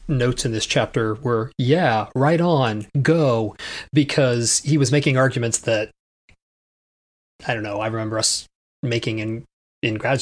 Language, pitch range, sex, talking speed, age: English, 110-135 Hz, male, 145 wpm, 30-49